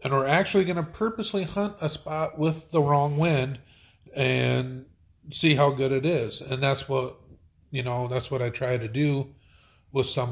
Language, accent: English, American